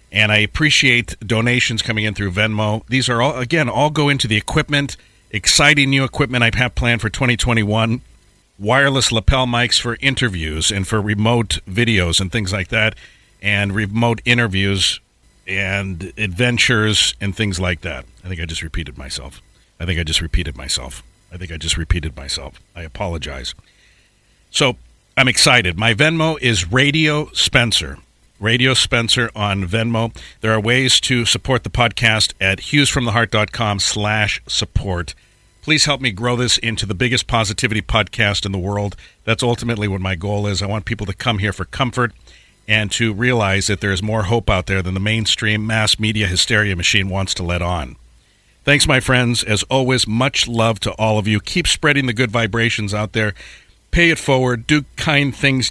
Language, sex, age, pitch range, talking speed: English, male, 50-69, 100-125 Hz, 175 wpm